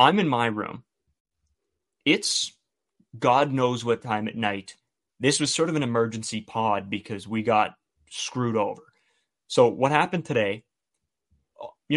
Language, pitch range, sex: English, 110-135 Hz, male